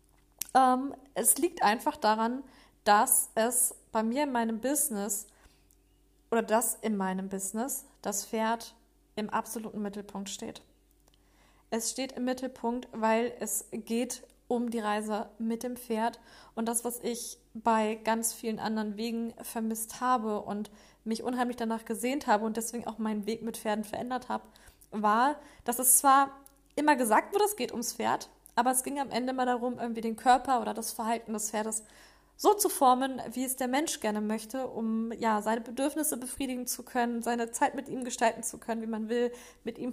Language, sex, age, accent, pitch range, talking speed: German, female, 20-39, German, 220-255 Hz, 170 wpm